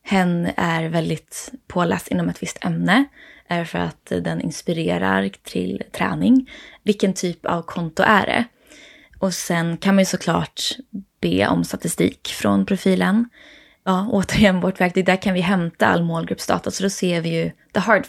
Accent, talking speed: native, 160 wpm